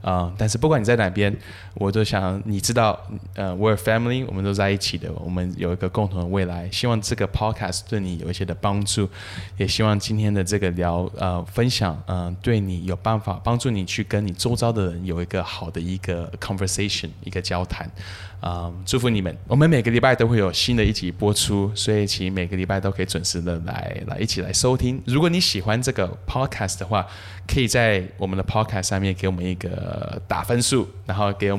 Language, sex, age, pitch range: Chinese, male, 10-29, 95-110 Hz